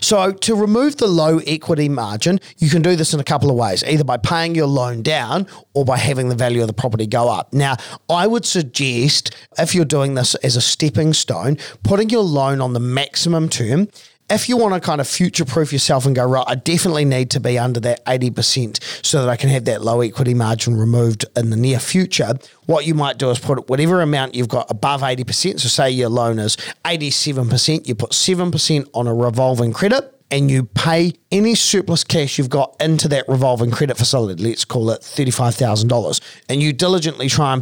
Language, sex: English, male